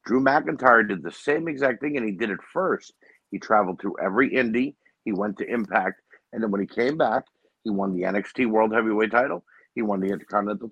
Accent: American